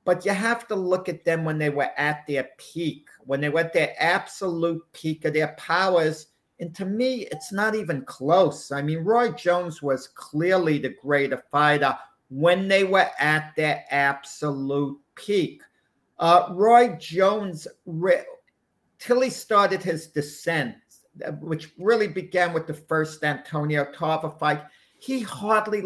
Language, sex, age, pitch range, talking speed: English, male, 50-69, 165-215 Hz, 150 wpm